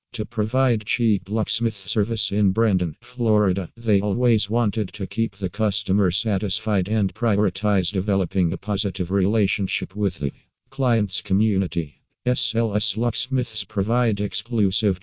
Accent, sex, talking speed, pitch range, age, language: American, male, 120 wpm, 95-110 Hz, 50-69, English